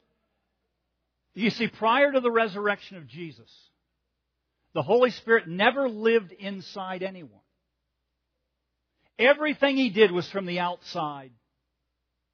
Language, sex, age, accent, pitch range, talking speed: English, male, 50-69, American, 165-235 Hz, 105 wpm